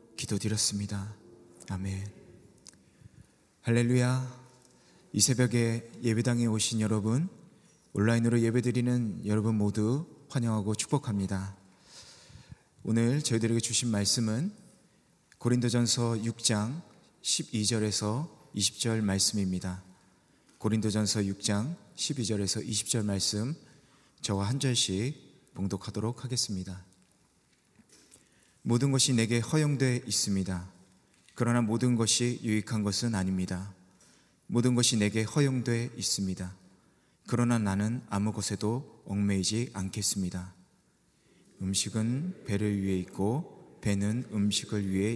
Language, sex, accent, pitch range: Korean, male, native, 100-125 Hz